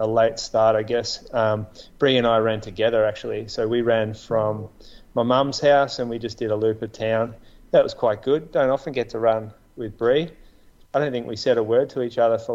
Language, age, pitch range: English, 30-49, 110-125 Hz